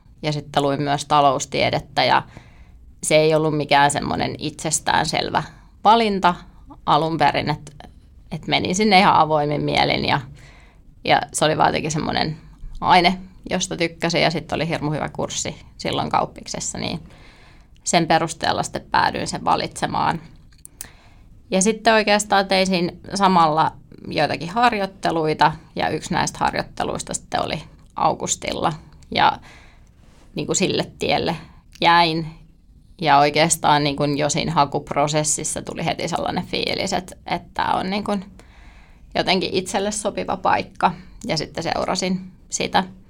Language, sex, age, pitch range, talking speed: Finnish, female, 20-39, 150-185 Hz, 120 wpm